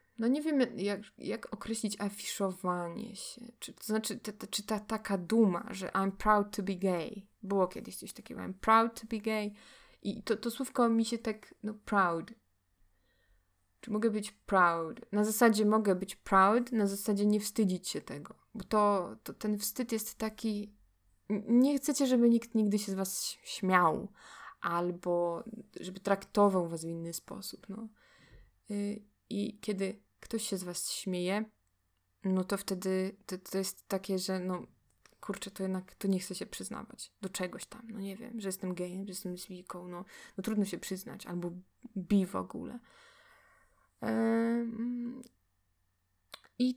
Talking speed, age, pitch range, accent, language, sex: 165 wpm, 20-39, 185-225 Hz, native, Polish, female